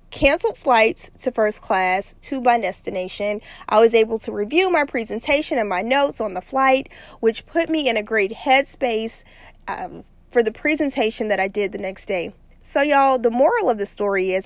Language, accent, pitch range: English, American, 195-260 Hz